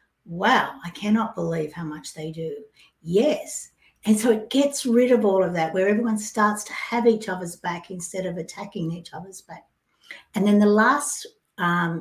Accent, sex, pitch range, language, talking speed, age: Australian, female, 175-235 Hz, English, 185 wpm, 60-79